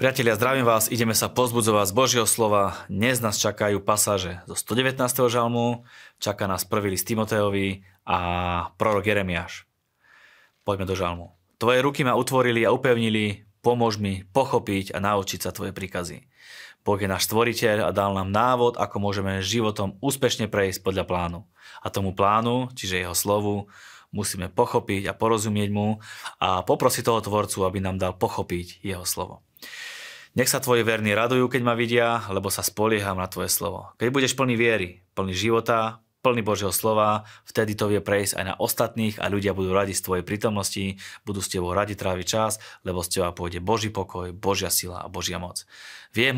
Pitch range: 95-115 Hz